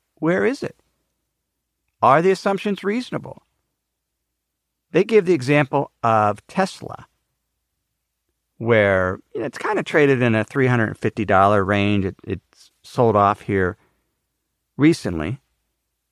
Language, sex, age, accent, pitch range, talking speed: English, male, 50-69, American, 100-160 Hz, 110 wpm